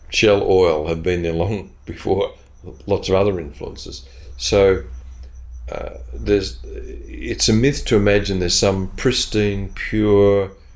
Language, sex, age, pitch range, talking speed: English, male, 50-69, 85-105 Hz, 130 wpm